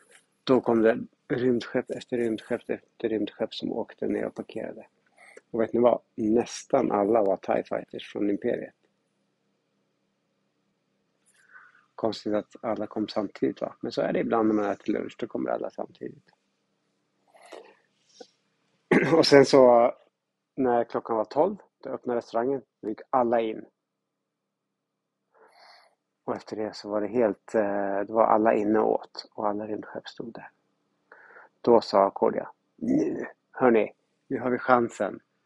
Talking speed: 140 wpm